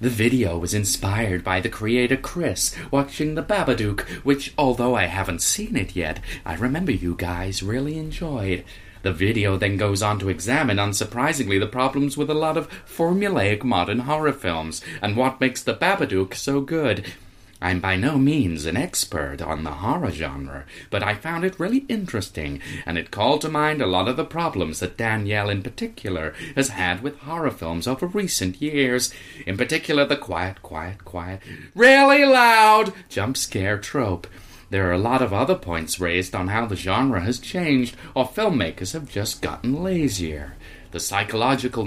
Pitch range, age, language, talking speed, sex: 90-135 Hz, 30-49, English, 170 wpm, male